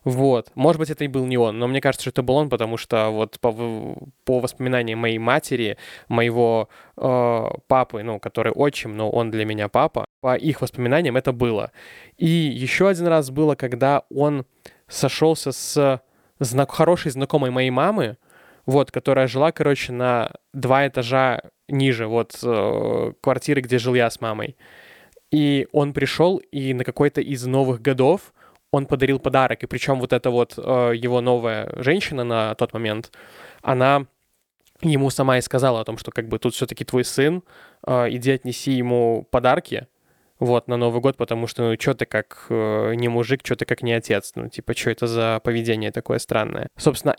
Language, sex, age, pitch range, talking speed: Russian, male, 20-39, 120-135 Hz, 170 wpm